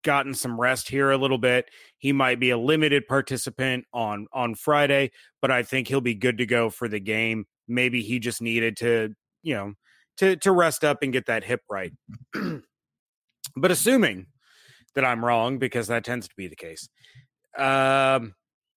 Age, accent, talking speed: 30-49, American, 180 wpm